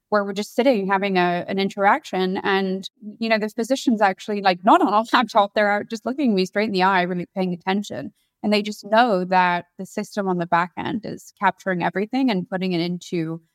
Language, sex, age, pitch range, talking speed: English, female, 20-39, 180-225 Hz, 215 wpm